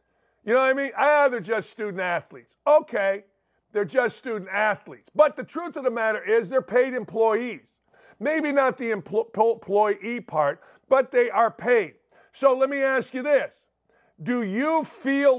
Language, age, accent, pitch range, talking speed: English, 50-69, American, 200-255 Hz, 170 wpm